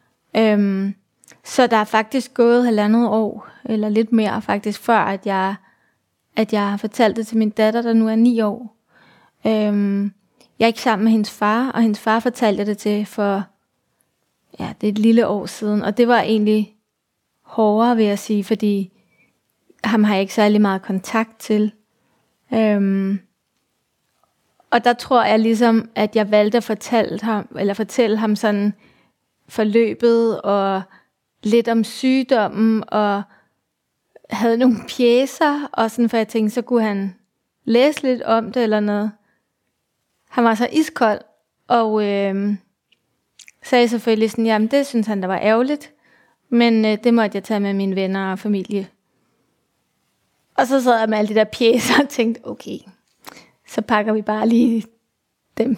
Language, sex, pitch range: Danish, female, 210-235 Hz